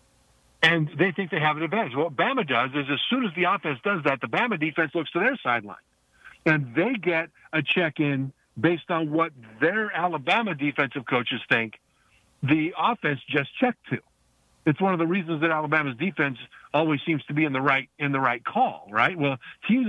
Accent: American